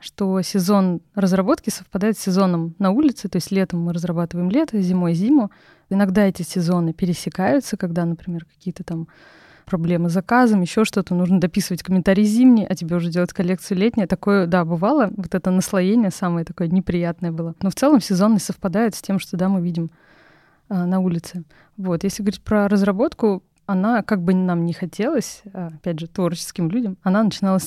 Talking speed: 175 wpm